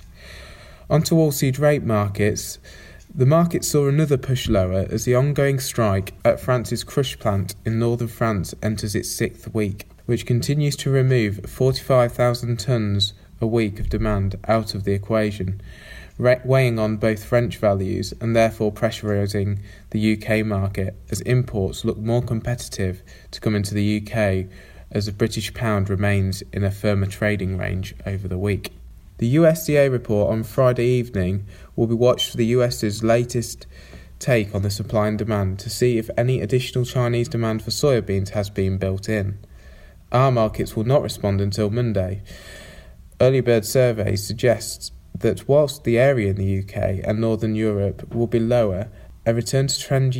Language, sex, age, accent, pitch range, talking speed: English, male, 20-39, British, 100-120 Hz, 160 wpm